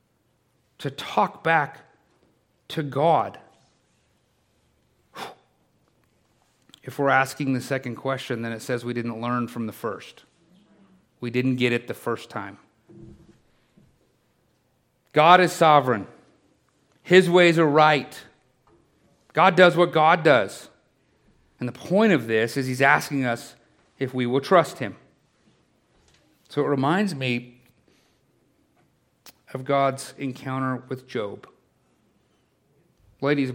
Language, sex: English, male